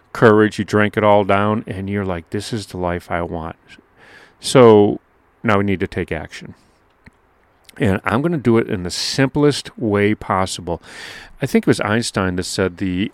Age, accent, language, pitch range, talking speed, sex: 40-59, American, English, 95-130 Hz, 185 wpm, male